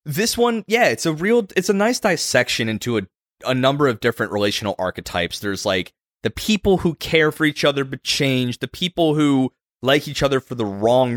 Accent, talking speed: American, 205 wpm